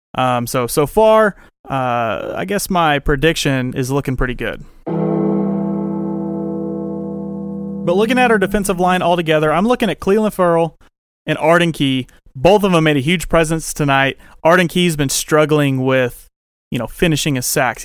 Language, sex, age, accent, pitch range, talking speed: English, male, 30-49, American, 140-185 Hz, 155 wpm